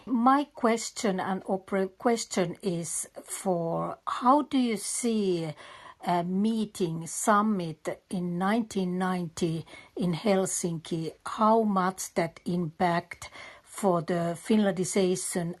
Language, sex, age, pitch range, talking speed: English, female, 60-79, 175-210 Hz, 95 wpm